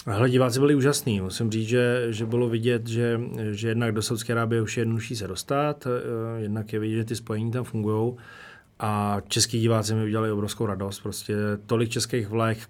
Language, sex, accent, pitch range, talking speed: Czech, male, native, 110-120 Hz, 185 wpm